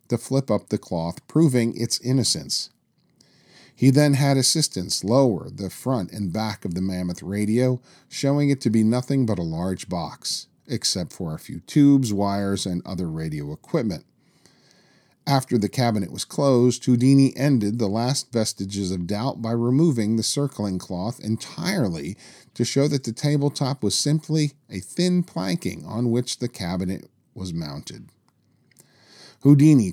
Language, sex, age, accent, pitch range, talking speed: English, male, 40-59, American, 100-135 Hz, 150 wpm